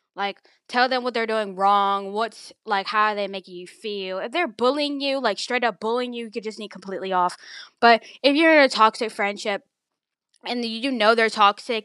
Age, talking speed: 10-29, 215 wpm